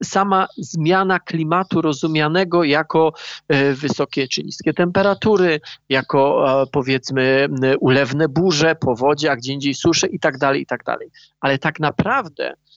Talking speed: 110 wpm